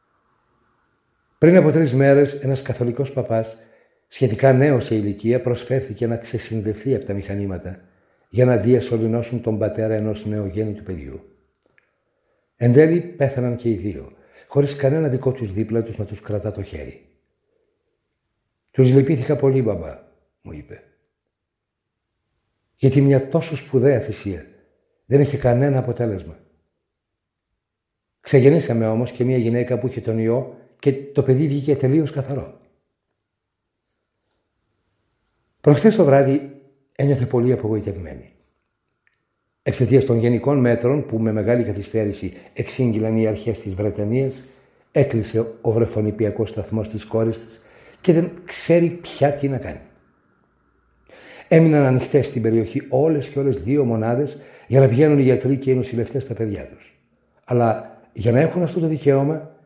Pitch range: 110-135 Hz